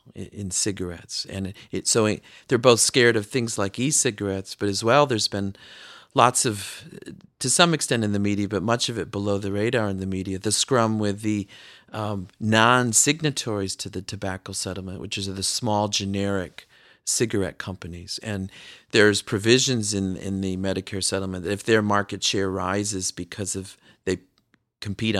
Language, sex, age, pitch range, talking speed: English, male, 40-59, 95-105 Hz, 165 wpm